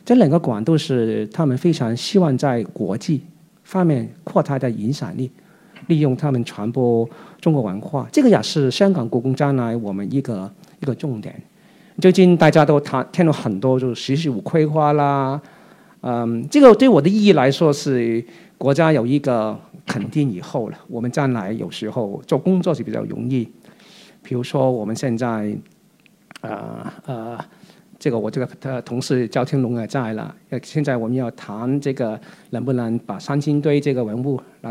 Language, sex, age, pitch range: Chinese, male, 50-69, 125-185 Hz